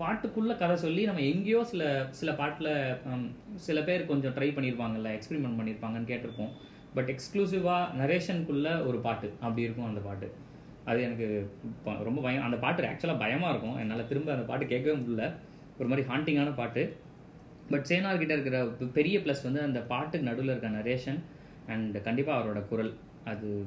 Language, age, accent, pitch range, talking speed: Tamil, 20-39, native, 110-150 Hz, 155 wpm